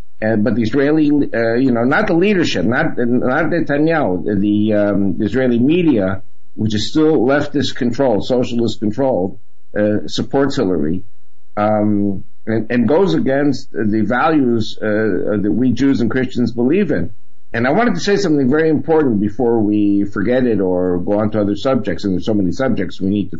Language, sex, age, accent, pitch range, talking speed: English, male, 60-79, American, 105-135 Hz, 175 wpm